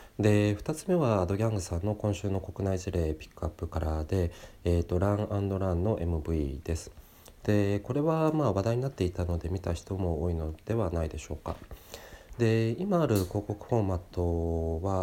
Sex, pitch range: male, 85-105 Hz